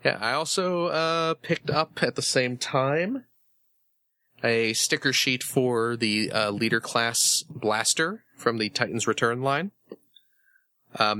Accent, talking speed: American, 135 wpm